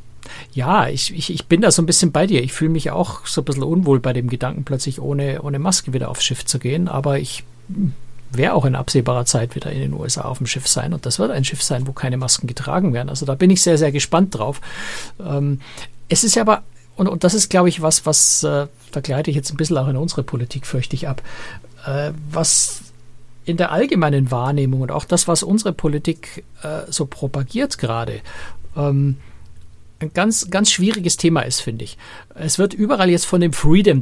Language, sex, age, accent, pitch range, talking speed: German, male, 60-79, German, 130-170 Hz, 215 wpm